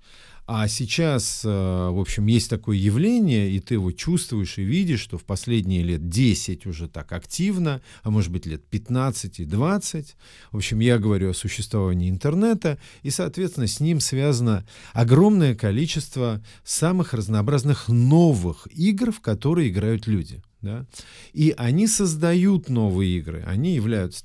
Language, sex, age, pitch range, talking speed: Russian, male, 40-59, 100-140 Hz, 145 wpm